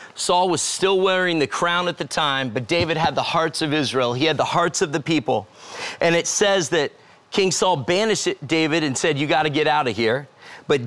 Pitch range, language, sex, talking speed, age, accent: 145-180 Hz, English, male, 225 wpm, 40-59, American